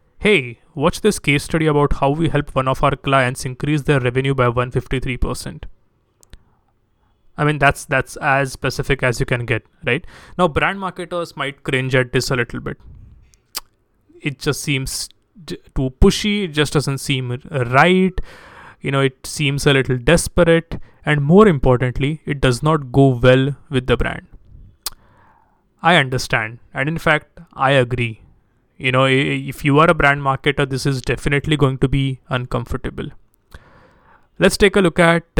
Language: English